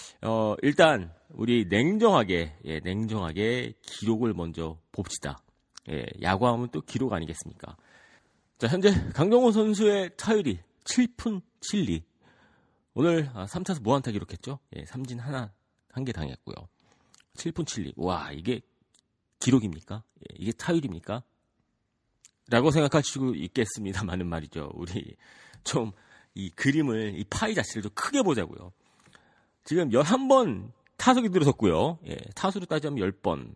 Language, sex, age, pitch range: Korean, male, 40-59, 100-155 Hz